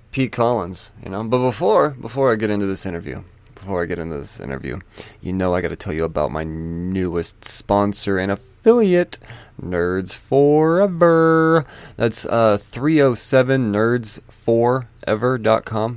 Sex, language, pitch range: male, English, 100-120 Hz